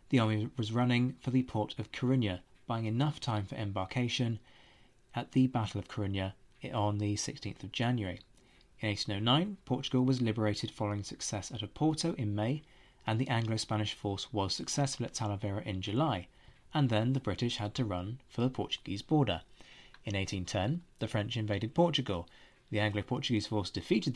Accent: British